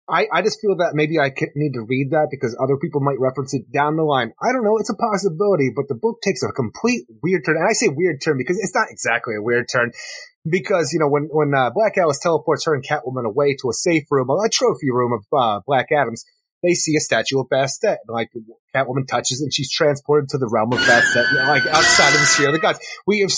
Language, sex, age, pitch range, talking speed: English, male, 30-49, 140-200 Hz, 255 wpm